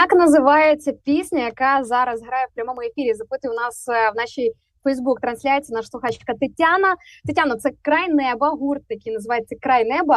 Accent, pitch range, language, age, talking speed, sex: native, 225-290 Hz, Ukrainian, 20-39, 165 wpm, female